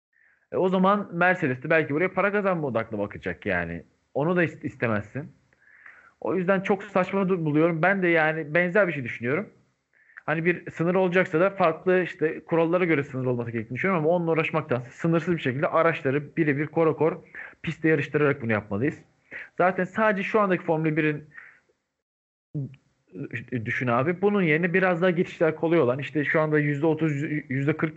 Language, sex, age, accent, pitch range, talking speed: Turkish, male, 40-59, native, 140-185 Hz, 150 wpm